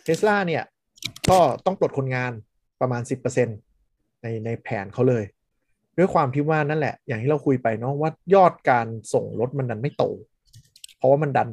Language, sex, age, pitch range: Thai, male, 20-39, 120-150 Hz